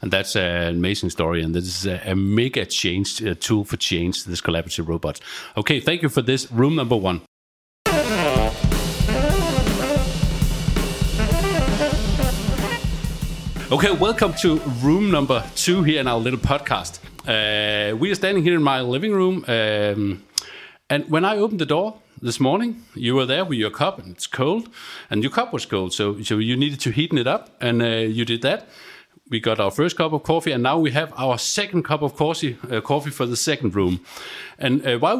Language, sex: Danish, male